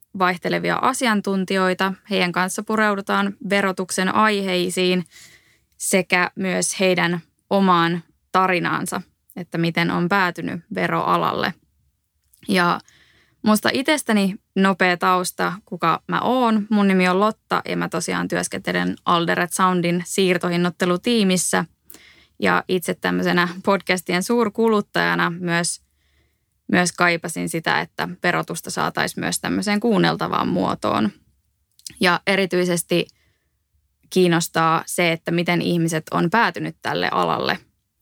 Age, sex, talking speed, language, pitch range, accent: 20-39, female, 100 wpm, Finnish, 170-200 Hz, native